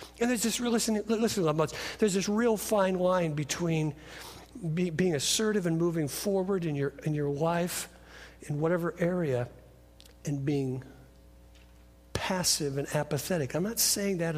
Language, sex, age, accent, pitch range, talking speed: English, male, 60-79, American, 145-205 Hz, 145 wpm